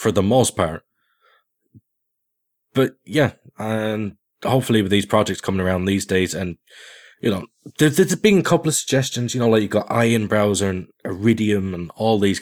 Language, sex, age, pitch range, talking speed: English, male, 20-39, 90-115 Hz, 180 wpm